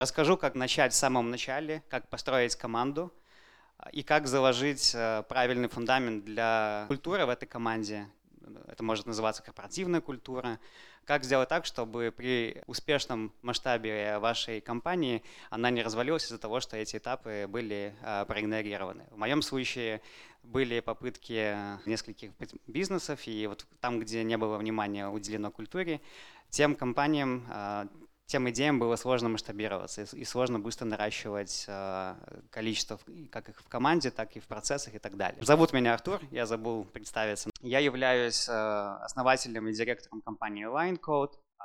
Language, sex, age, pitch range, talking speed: Russian, male, 20-39, 110-130 Hz, 135 wpm